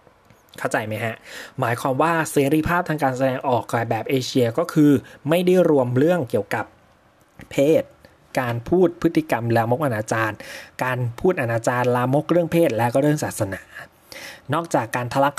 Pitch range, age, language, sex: 115-150 Hz, 20-39, Thai, male